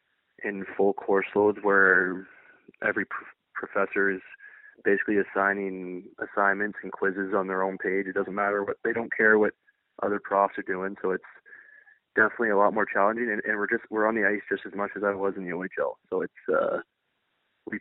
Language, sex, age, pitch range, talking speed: English, male, 20-39, 95-110 Hz, 190 wpm